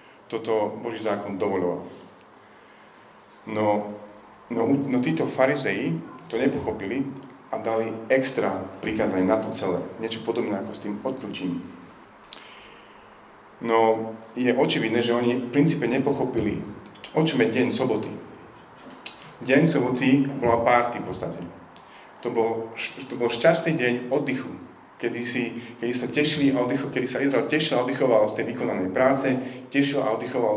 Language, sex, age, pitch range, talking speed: Slovak, male, 40-59, 105-130 Hz, 120 wpm